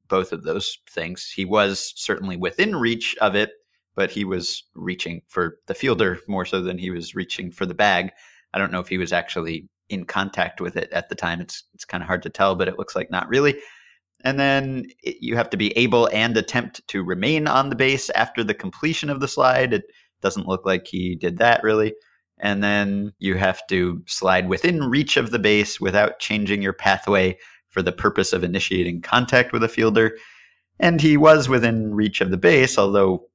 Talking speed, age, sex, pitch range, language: 205 wpm, 30-49, male, 90-115 Hz, English